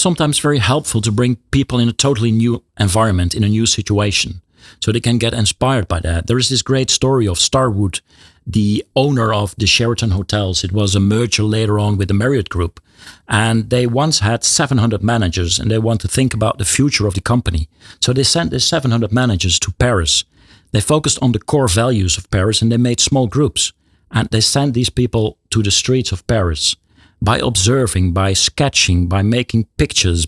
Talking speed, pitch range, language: 200 wpm, 95-125 Hz, English